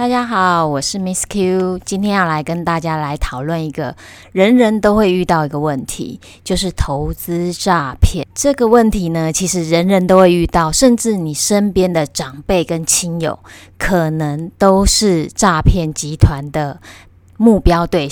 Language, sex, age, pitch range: Chinese, female, 20-39, 155-190 Hz